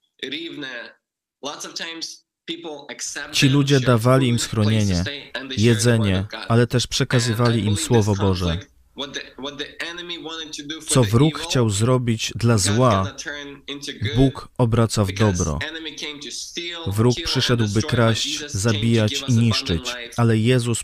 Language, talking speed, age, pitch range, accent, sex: Polish, 85 wpm, 20-39, 110-135 Hz, native, male